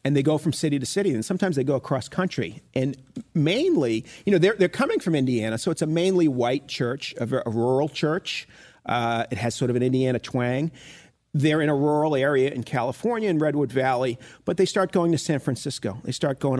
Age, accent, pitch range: 40-59, American, 120-155 Hz